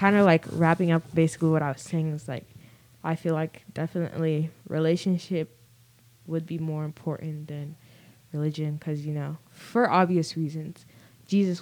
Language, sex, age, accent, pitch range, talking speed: English, female, 10-29, American, 150-195 Hz, 155 wpm